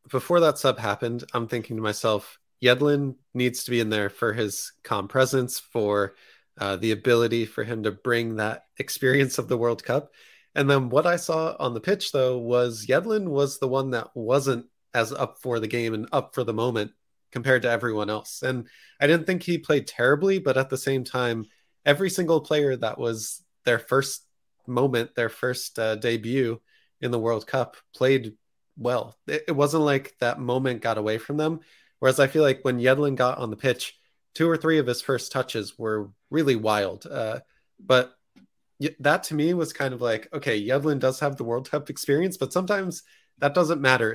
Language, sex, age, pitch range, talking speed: English, male, 20-39, 115-145 Hz, 195 wpm